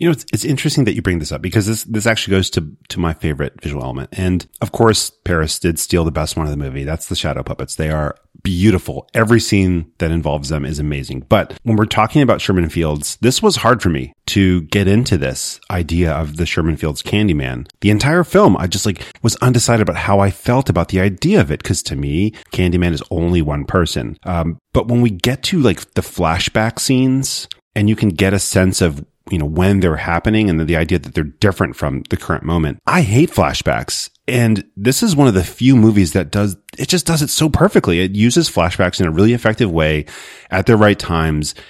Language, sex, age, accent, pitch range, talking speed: English, male, 30-49, American, 85-110 Hz, 225 wpm